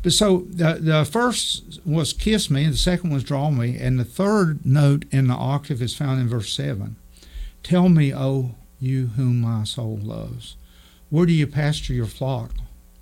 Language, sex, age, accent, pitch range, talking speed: English, male, 50-69, American, 115-155 Hz, 180 wpm